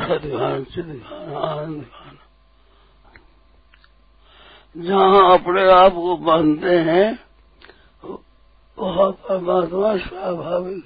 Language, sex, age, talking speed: Hindi, male, 60-79, 70 wpm